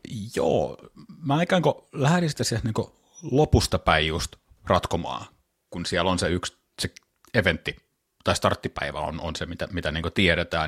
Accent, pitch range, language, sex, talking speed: native, 80-95 Hz, Finnish, male, 155 wpm